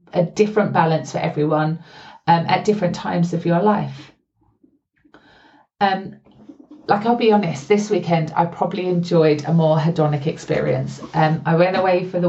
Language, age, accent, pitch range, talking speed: English, 30-49, British, 160-190 Hz, 155 wpm